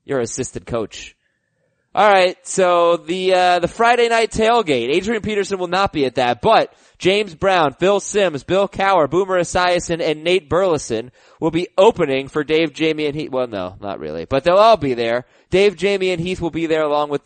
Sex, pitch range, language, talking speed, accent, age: male, 135-180 Hz, English, 195 wpm, American, 20-39